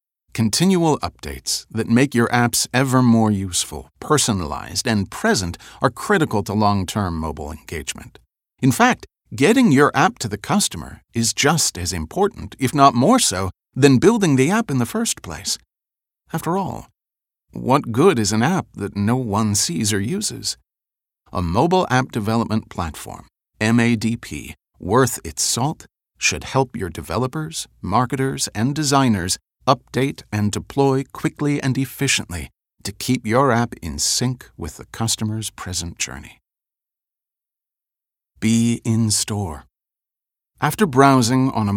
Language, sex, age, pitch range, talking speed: English, male, 40-59, 95-130 Hz, 135 wpm